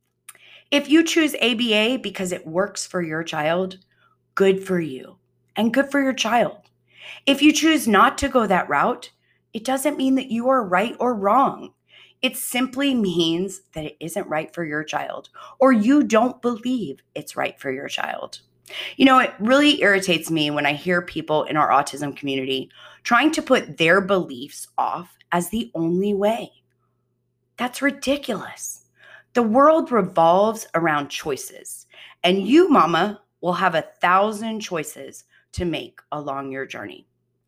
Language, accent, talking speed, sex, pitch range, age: English, American, 155 wpm, female, 165-245 Hz, 30-49